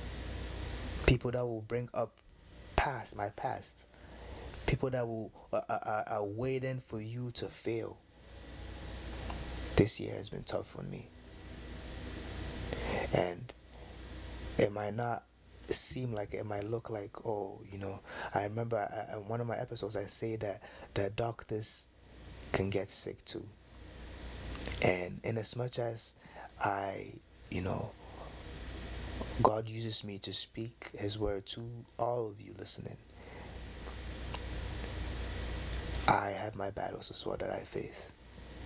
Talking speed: 130 wpm